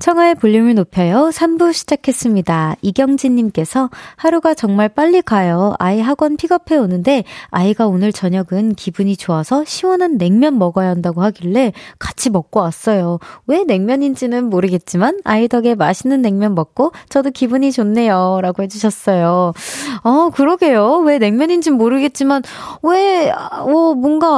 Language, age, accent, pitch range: Korean, 20-39, native, 190-285 Hz